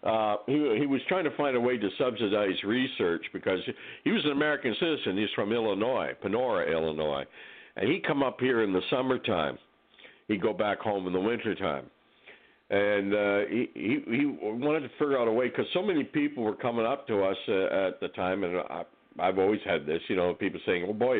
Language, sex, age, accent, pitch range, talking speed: English, male, 60-79, American, 95-135 Hz, 205 wpm